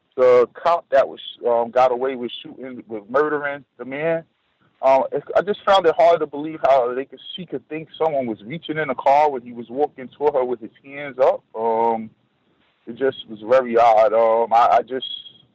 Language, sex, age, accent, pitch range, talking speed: English, male, 30-49, American, 120-145 Hz, 210 wpm